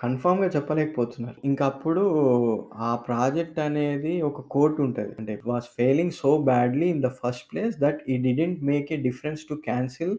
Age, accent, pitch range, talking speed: 20-39, native, 120-145 Hz, 155 wpm